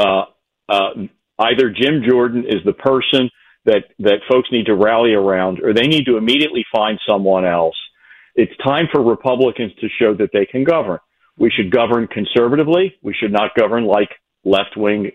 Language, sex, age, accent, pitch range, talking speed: English, male, 50-69, American, 110-140 Hz, 170 wpm